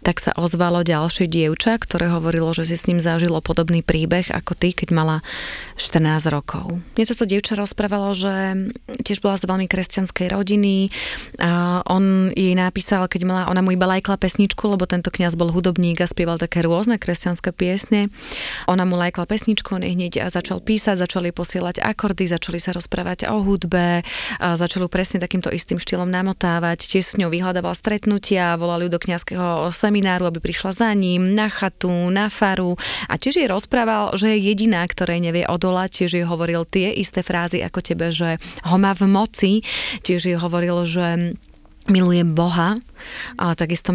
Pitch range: 175-195 Hz